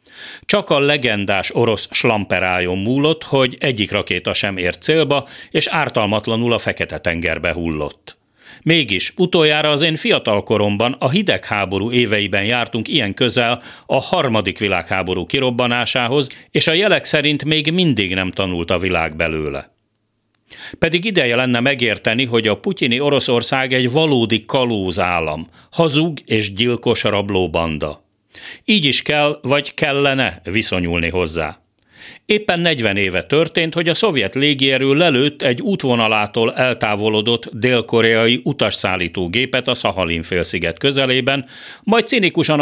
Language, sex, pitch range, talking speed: Hungarian, male, 100-140 Hz, 125 wpm